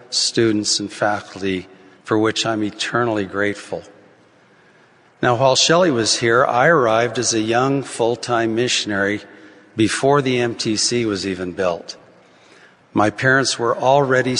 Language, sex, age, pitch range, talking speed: English, male, 50-69, 105-125 Hz, 130 wpm